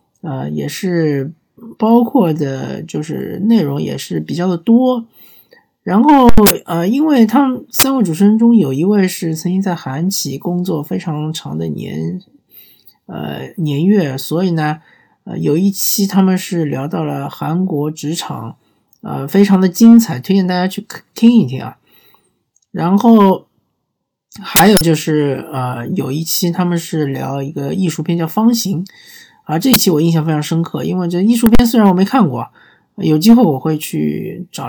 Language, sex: Chinese, male